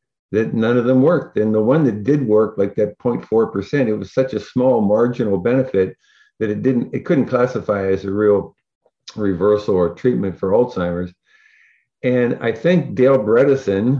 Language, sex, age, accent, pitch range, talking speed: English, male, 50-69, American, 100-130 Hz, 170 wpm